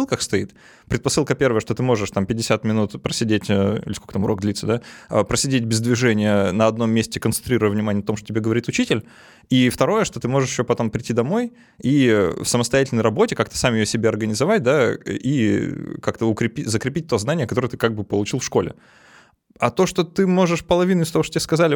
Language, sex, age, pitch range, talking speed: Russian, male, 20-39, 105-130 Hz, 205 wpm